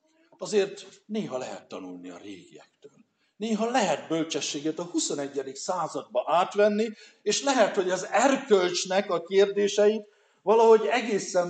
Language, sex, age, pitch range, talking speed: Hungarian, male, 60-79, 145-205 Hz, 115 wpm